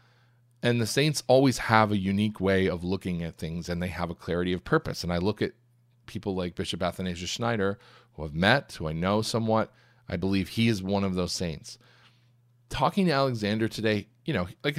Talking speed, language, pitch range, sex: 205 wpm, English, 95-120 Hz, male